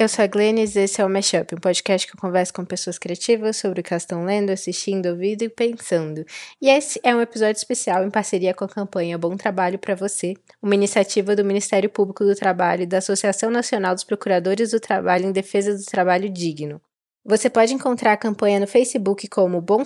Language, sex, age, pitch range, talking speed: Portuguese, female, 10-29, 185-220 Hz, 215 wpm